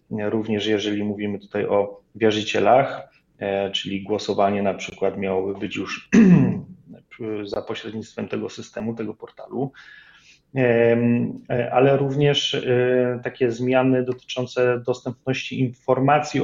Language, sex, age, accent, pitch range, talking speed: Polish, male, 30-49, native, 110-125 Hz, 100 wpm